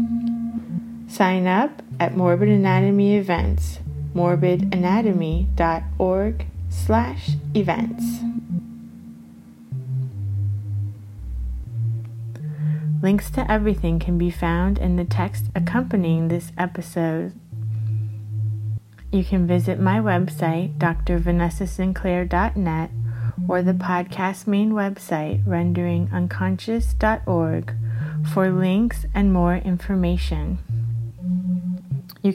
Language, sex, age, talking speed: English, female, 30-49, 70 wpm